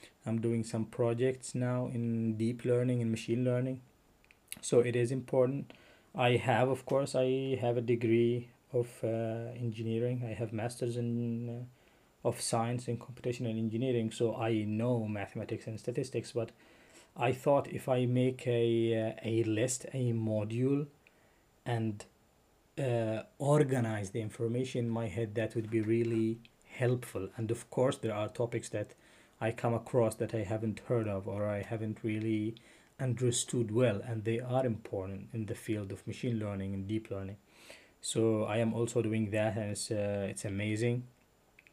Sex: male